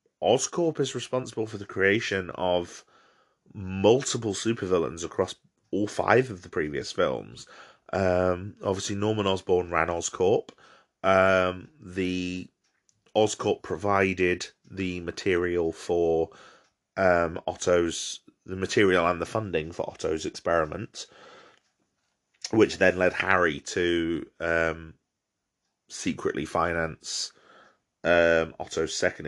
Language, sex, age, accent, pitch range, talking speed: English, male, 30-49, British, 85-105 Hz, 100 wpm